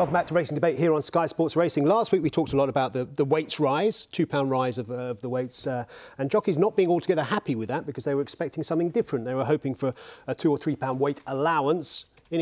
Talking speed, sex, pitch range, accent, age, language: 260 wpm, male, 120-160 Hz, British, 40-59, English